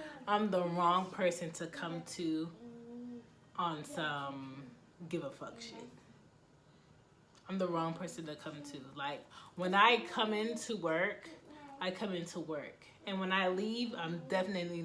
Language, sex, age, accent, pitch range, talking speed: English, female, 30-49, American, 165-200 Hz, 145 wpm